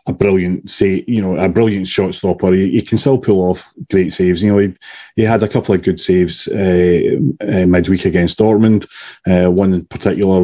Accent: British